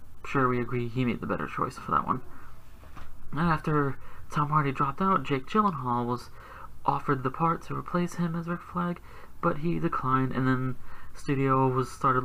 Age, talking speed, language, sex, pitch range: 30-49, 180 wpm, English, male, 125-165 Hz